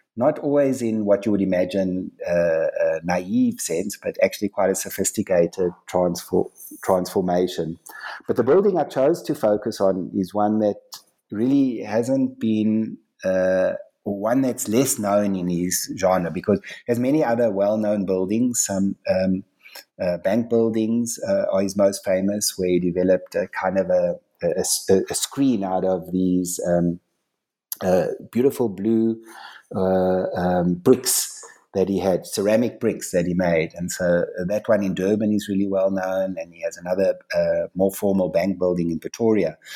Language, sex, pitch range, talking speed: English, male, 95-120 Hz, 160 wpm